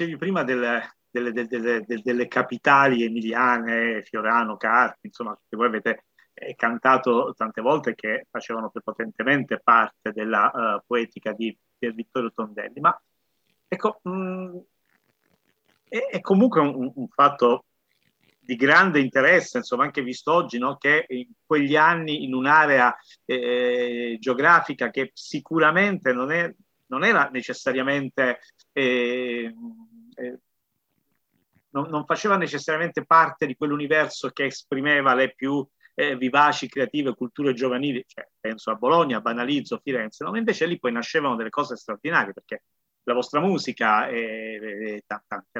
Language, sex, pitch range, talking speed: Italian, male, 120-155 Hz, 130 wpm